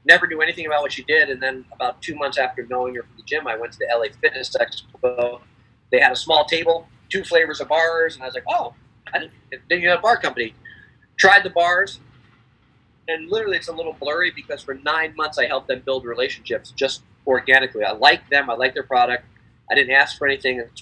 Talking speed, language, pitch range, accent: 220 wpm, English, 125-160 Hz, American